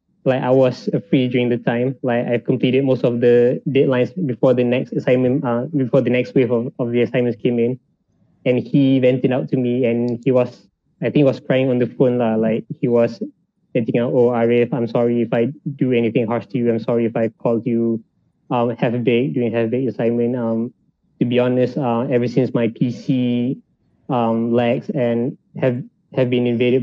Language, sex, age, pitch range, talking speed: English, male, 20-39, 120-130 Hz, 210 wpm